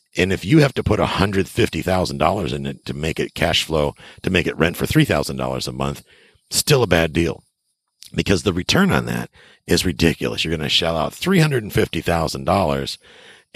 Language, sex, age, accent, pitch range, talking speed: English, male, 50-69, American, 75-105 Hz, 175 wpm